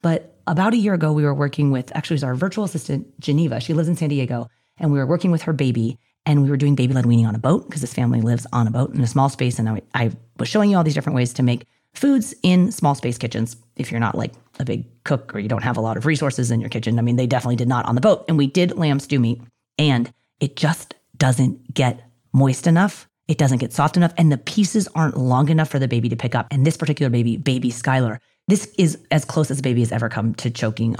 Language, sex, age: English, female, 30-49